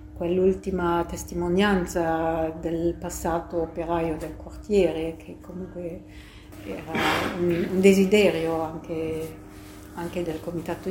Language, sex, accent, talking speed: Italian, female, native, 95 wpm